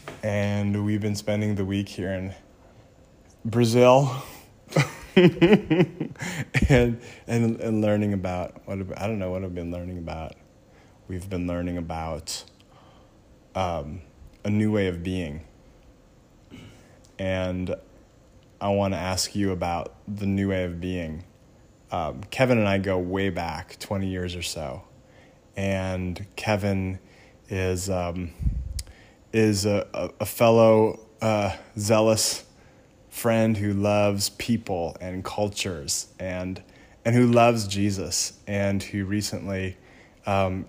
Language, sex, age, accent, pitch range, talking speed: English, male, 20-39, American, 95-110 Hz, 120 wpm